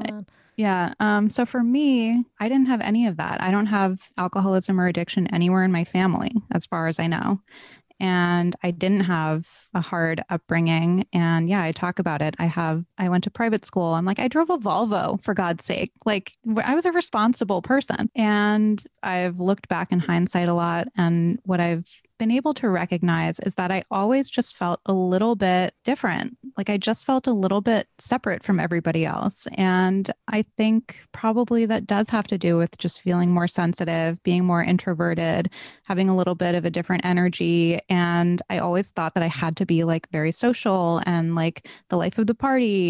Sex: female